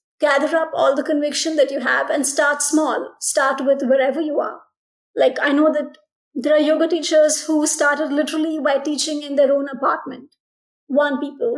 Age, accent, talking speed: 30-49, Indian, 180 wpm